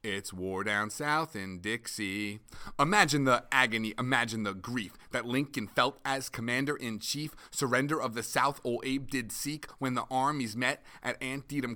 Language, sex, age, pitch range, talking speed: English, male, 30-49, 120-175 Hz, 160 wpm